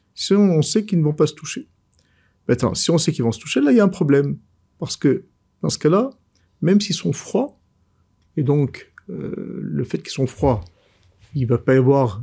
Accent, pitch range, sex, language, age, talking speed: French, 125-175 Hz, male, French, 50-69, 230 wpm